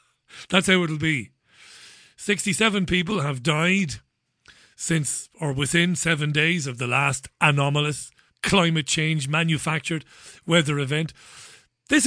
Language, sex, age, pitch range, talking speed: English, male, 40-59, 140-190 Hz, 115 wpm